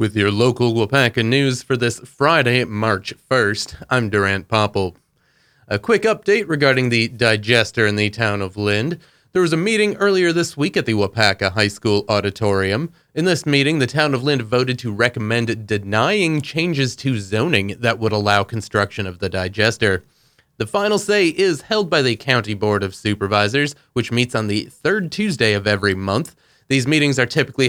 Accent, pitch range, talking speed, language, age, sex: American, 105-145 Hz, 180 wpm, English, 30-49, male